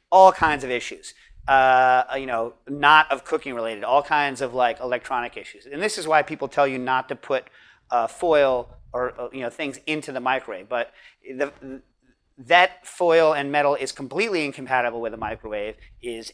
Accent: American